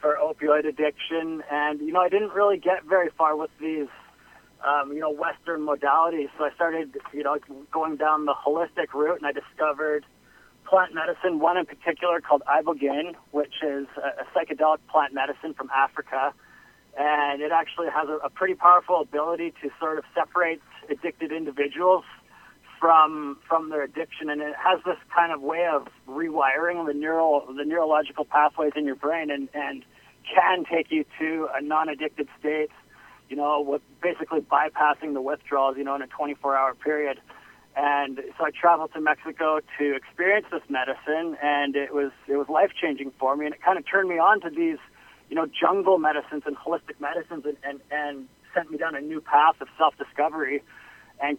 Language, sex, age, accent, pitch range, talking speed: English, male, 30-49, American, 145-165 Hz, 175 wpm